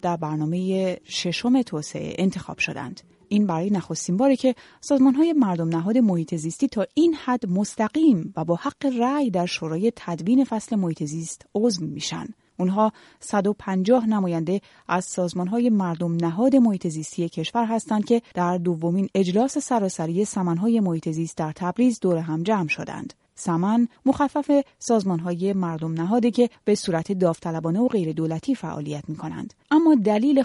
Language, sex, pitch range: Persian, female, 170-240 Hz